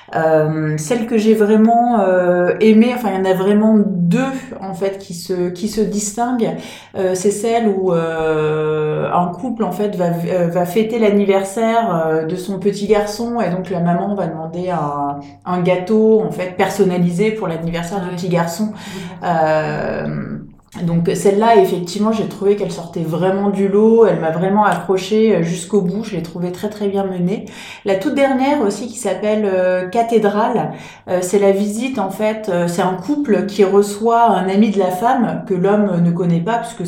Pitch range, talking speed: 175-220 Hz, 180 wpm